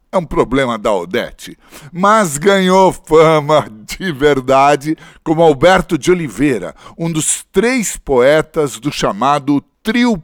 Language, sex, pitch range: Portuguese, male, 140-185 Hz